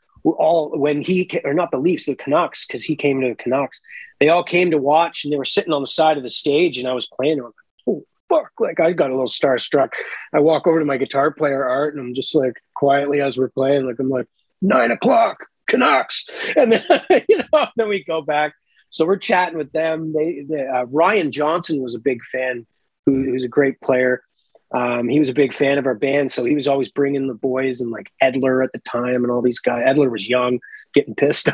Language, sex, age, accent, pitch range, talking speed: English, male, 30-49, American, 135-175 Hz, 240 wpm